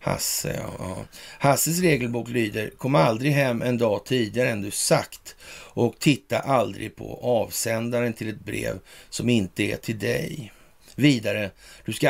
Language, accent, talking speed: Swedish, native, 155 wpm